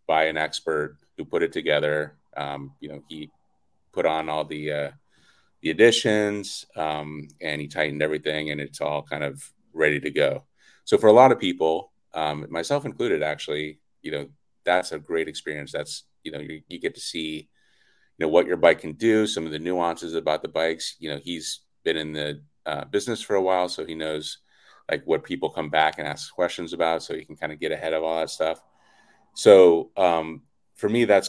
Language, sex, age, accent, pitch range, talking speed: English, male, 30-49, American, 75-85 Hz, 205 wpm